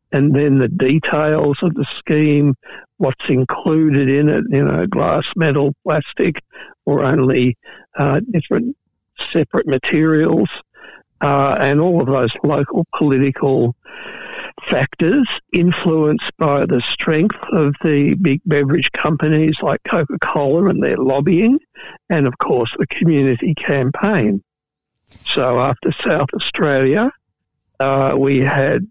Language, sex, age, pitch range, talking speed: English, male, 60-79, 135-165 Hz, 120 wpm